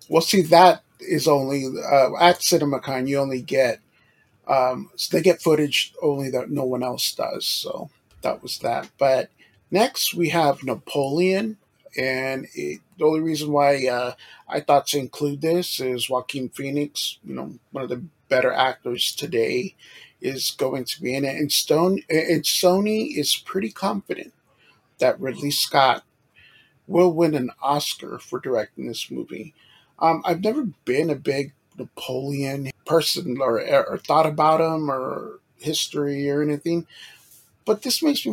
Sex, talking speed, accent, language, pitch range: male, 155 wpm, American, English, 130-165 Hz